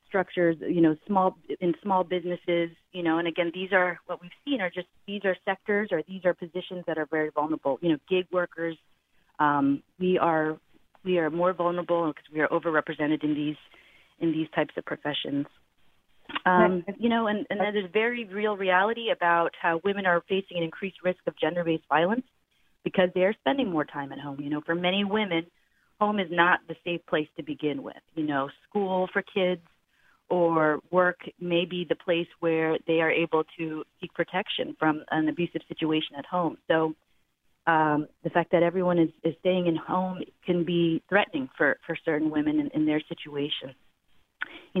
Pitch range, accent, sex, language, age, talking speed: 155-185 Hz, American, female, English, 30-49, 190 wpm